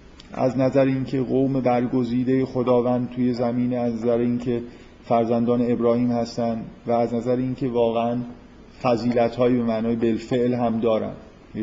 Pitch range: 115-140 Hz